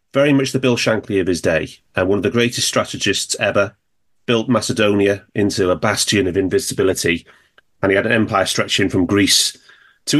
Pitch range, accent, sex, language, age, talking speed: 100-130 Hz, British, male, English, 30-49, 180 wpm